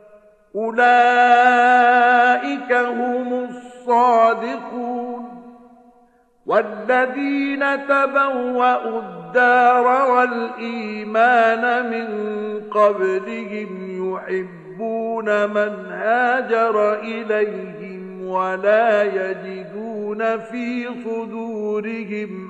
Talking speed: 45 wpm